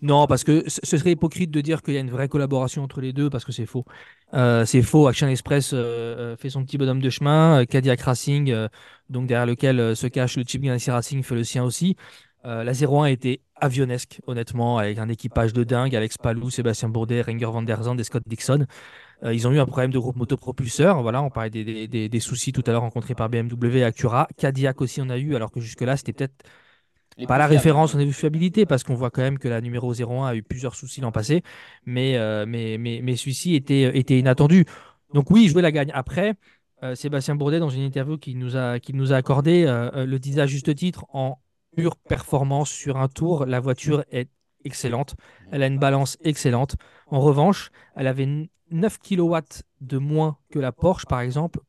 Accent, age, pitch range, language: French, 20-39, 120-145 Hz, French